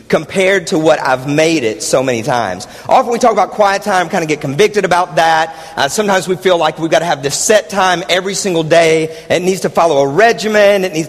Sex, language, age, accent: male, English, 50-69, American